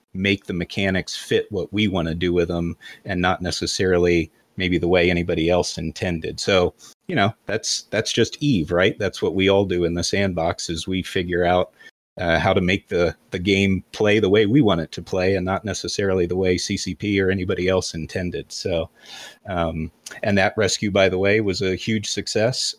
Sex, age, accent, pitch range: male, 30-49, American, 90-105 Hz